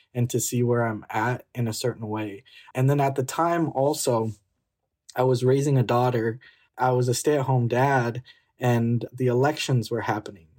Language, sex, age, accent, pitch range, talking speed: English, male, 20-39, American, 115-135 Hz, 175 wpm